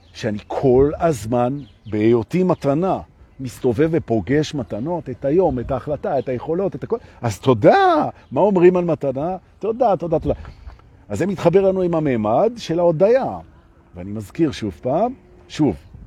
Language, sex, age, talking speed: Hebrew, male, 50-69, 140 wpm